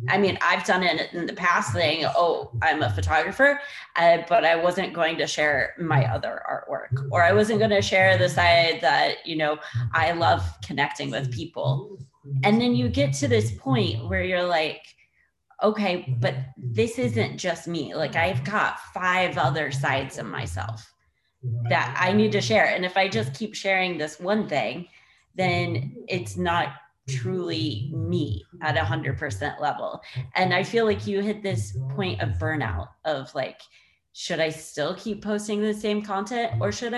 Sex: female